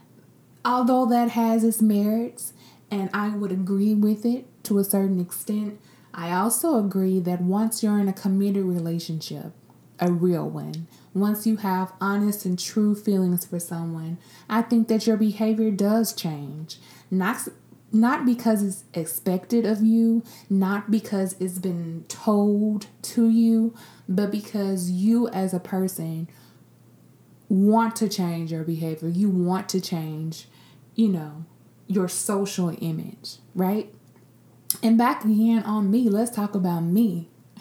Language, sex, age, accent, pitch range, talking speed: English, female, 20-39, American, 175-215 Hz, 140 wpm